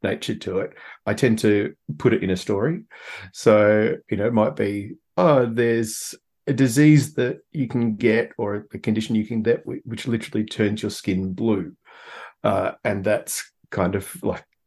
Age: 40-59